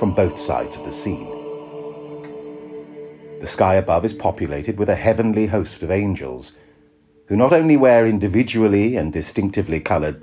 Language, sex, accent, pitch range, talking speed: English, male, British, 90-125 Hz, 145 wpm